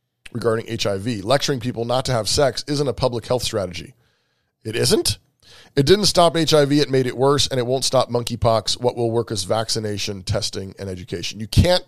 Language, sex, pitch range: English, male, 110-145 Hz